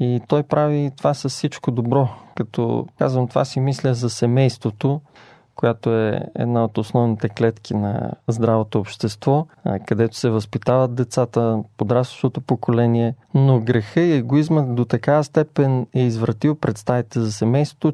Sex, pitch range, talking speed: male, 120-150 Hz, 135 wpm